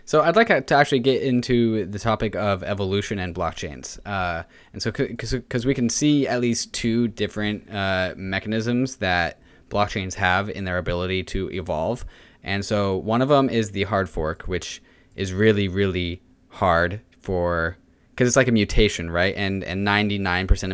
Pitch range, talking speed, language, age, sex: 95-115 Hz, 175 wpm, English, 20-39, male